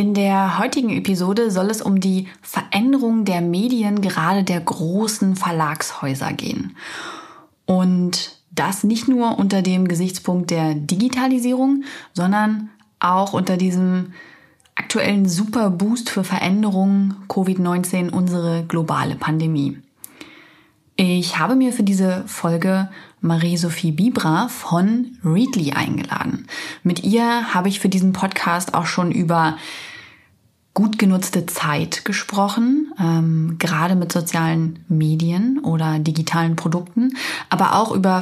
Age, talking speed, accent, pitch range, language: 30-49, 115 wpm, German, 170-215 Hz, German